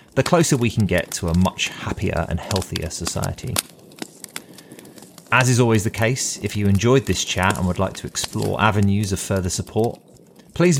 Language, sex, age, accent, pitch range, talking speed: English, male, 30-49, British, 90-125 Hz, 180 wpm